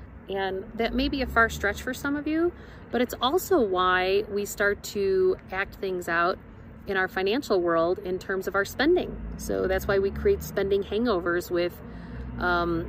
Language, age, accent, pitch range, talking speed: English, 40-59, American, 175-220 Hz, 180 wpm